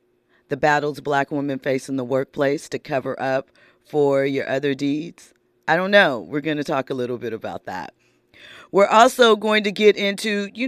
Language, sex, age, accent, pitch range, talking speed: English, female, 40-59, American, 145-200 Hz, 190 wpm